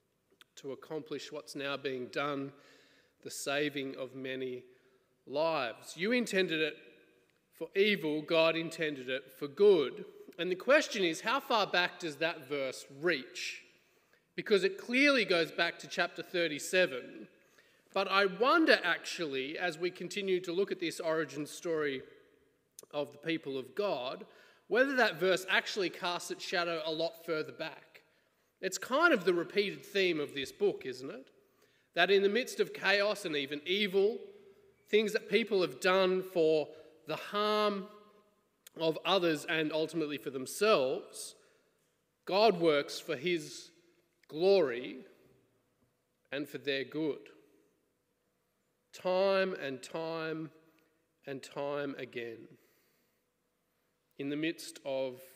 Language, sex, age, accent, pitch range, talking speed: English, male, 30-49, Australian, 150-205 Hz, 130 wpm